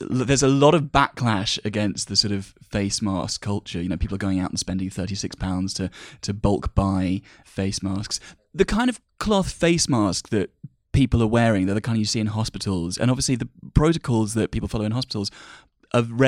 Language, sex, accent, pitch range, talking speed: English, male, British, 100-120 Hz, 200 wpm